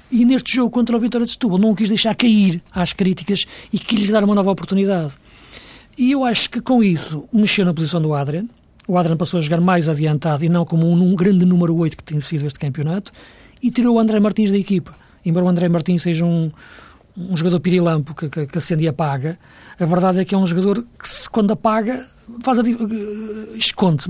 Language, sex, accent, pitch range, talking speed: Portuguese, male, Portuguese, 170-220 Hz, 220 wpm